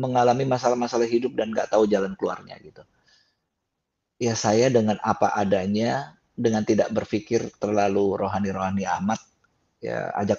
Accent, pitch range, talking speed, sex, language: native, 105-125 Hz, 125 wpm, male, Indonesian